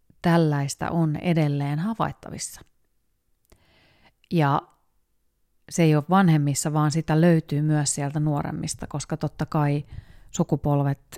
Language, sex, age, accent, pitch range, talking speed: Finnish, female, 30-49, native, 145-175 Hz, 100 wpm